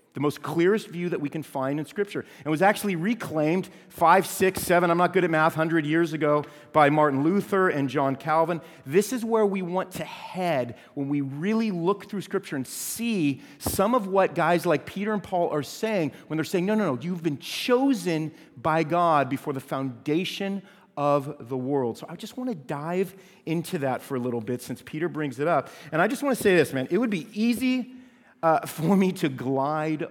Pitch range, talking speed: 125-180 Hz, 215 wpm